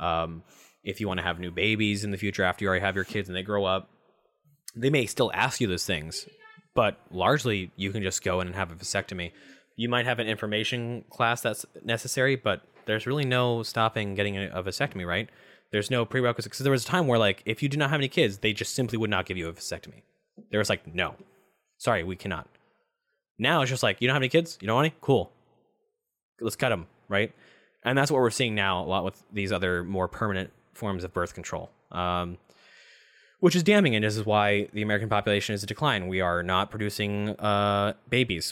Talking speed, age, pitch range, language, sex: 225 wpm, 20-39, 95-120 Hz, English, male